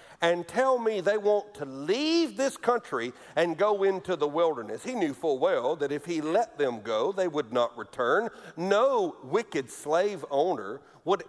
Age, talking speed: 50-69, 175 wpm